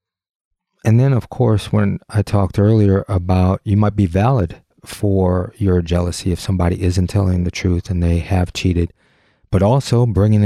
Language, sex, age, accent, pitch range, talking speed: English, male, 30-49, American, 90-105 Hz, 165 wpm